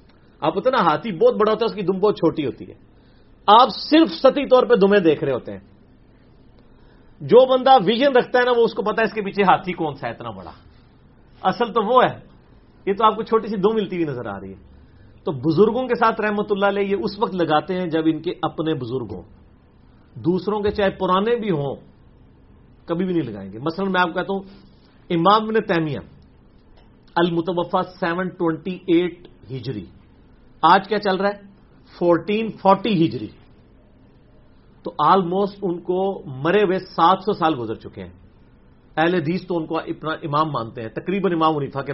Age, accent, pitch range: 40-59, Indian, 140-205 Hz